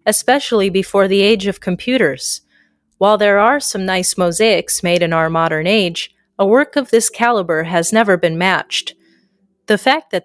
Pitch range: 170-225 Hz